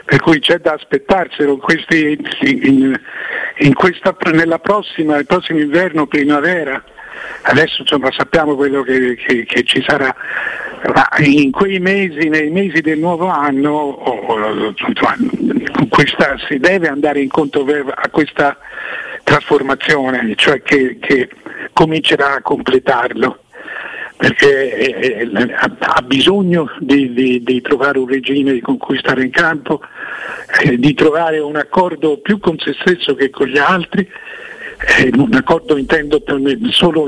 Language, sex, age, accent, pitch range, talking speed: Italian, male, 50-69, native, 140-190 Hz, 125 wpm